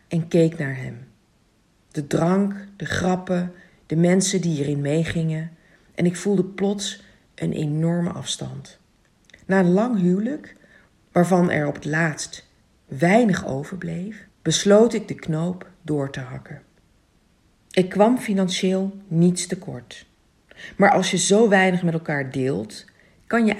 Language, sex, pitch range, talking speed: Dutch, female, 155-200 Hz, 135 wpm